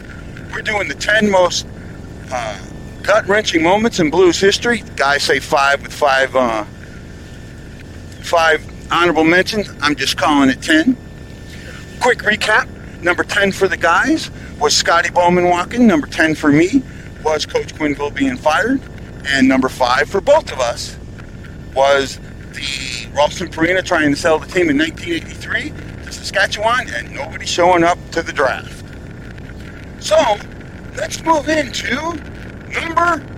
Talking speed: 140 wpm